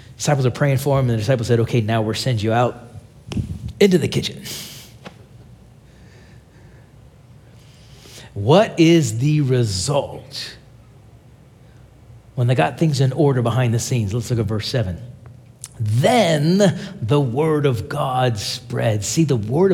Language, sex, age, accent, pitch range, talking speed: English, male, 40-59, American, 125-180 Hz, 135 wpm